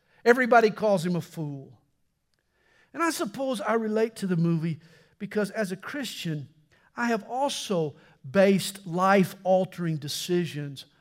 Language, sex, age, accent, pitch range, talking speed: English, male, 50-69, American, 160-245 Hz, 125 wpm